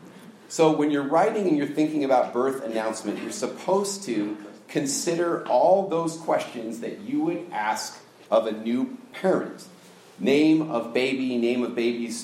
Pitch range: 120-160 Hz